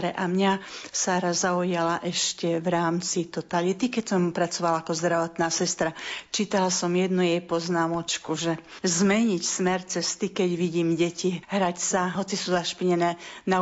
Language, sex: Slovak, female